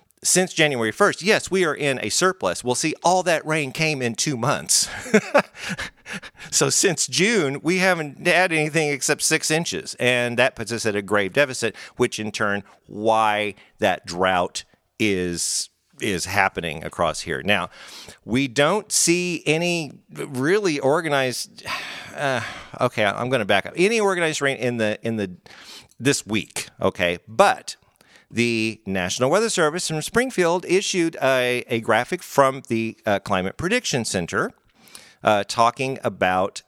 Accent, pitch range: American, 110-175 Hz